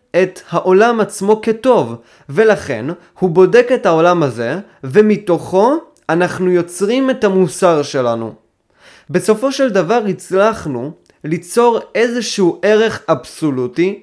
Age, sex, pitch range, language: 20-39, male, 155-220 Hz, Hebrew